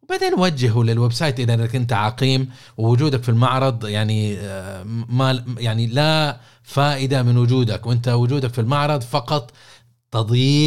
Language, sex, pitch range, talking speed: Arabic, male, 105-125 Hz, 130 wpm